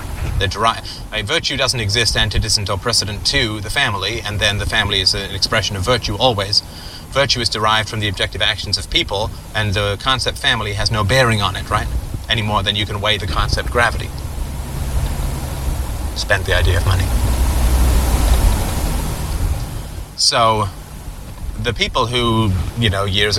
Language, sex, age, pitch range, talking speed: English, male, 30-49, 90-105 Hz, 155 wpm